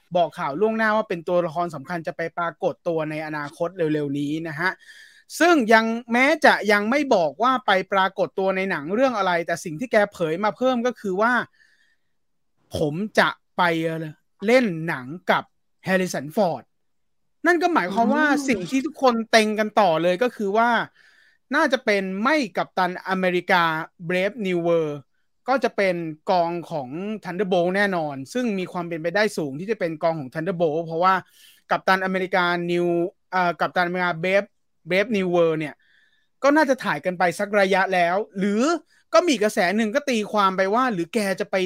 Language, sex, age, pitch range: English, male, 30-49, 175-225 Hz